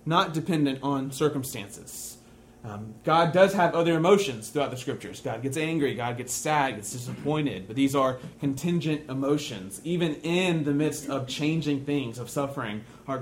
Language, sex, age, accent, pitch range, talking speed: English, male, 30-49, American, 140-185 Hz, 165 wpm